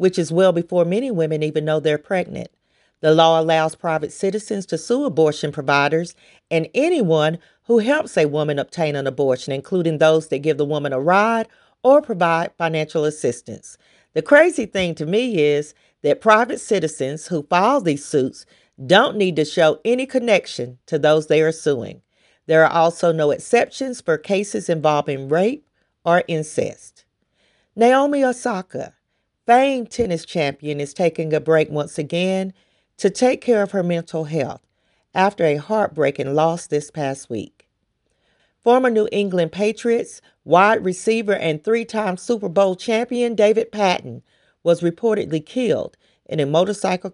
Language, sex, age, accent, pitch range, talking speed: English, female, 40-59, American, 155-210 Hz, 150 wpm